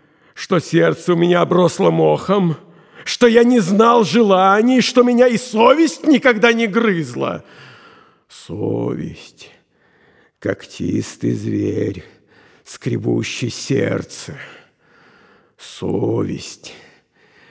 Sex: male